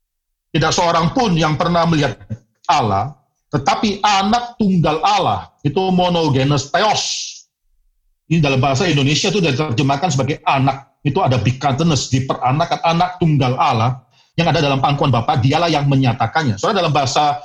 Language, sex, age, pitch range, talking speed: Indonesian, male, 40-59, 125-160 Hz, 140 wpm